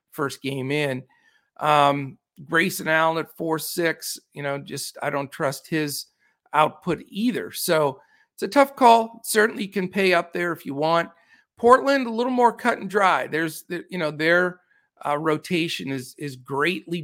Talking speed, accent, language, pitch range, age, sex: 160 wpm, American, English, 150-185 Hz, 50-69, male